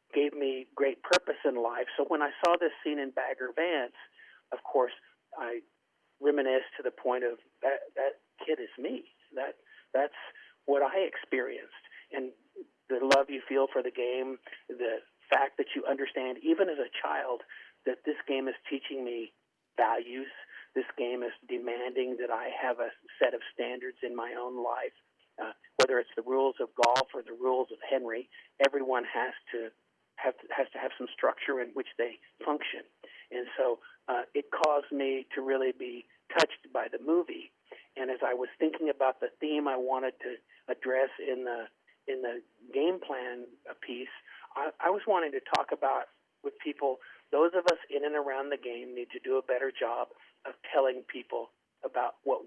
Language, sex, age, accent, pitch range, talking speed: English, male, 40-59, American, 125-190 Hz, 180 wpm